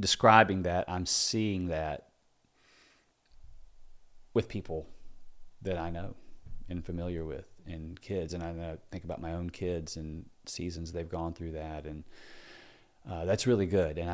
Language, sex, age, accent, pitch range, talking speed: English, male, 30-49, American, 85-100 Hz, 145 wpm